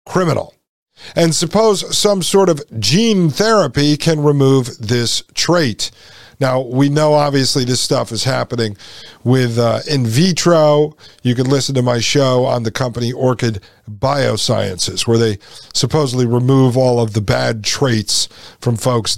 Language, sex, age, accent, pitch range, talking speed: English, male, 50-69, American, 130-175 Hz, 145 wpm